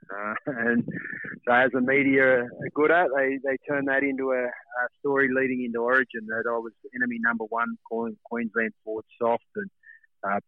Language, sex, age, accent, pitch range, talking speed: English, male, 30-49, Australian, 115-130 Hz, 185 wpm